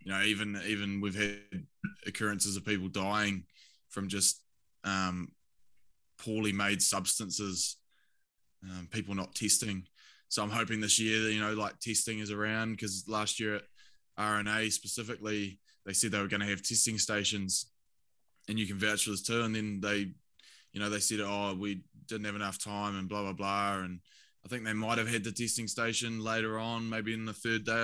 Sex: male